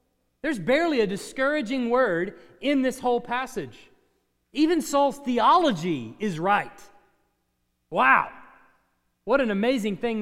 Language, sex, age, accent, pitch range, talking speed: English, male, 40-59, American, 195-265 Hz, 110 wpm